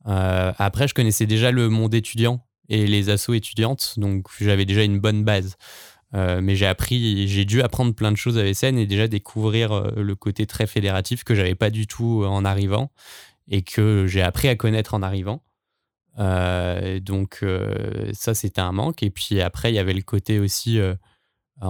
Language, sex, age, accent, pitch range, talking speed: French, male, 20-39, French, 100-115 Hz, 190 wpm